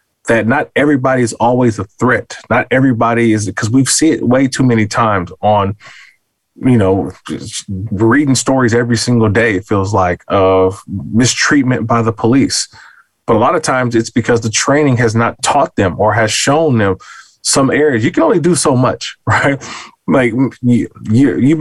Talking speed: 180 wpm